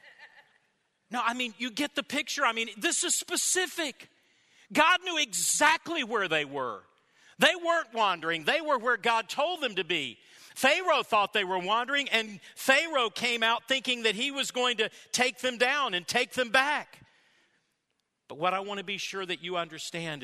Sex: male